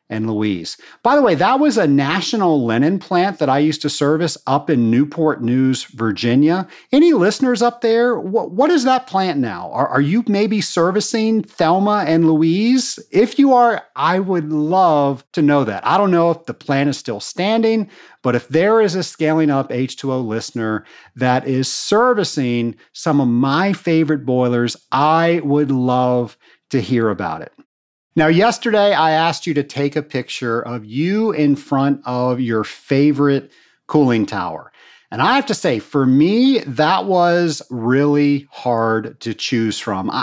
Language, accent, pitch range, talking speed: English, American, 130-200 Hz, 165 wpm